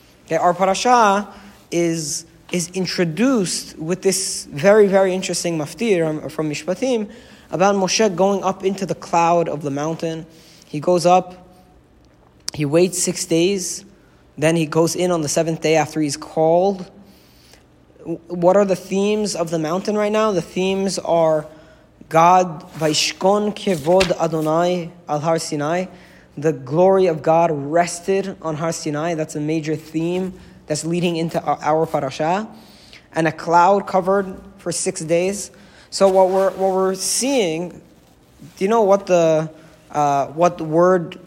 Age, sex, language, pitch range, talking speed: 20-39, male, English, 160-190 Hz, 140 wpm